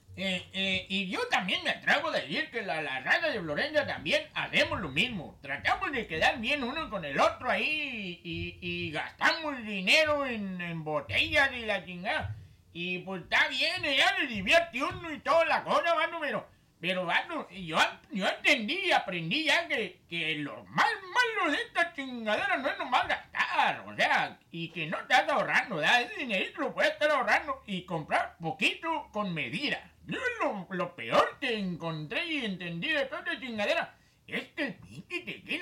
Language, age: Spanish, 60-79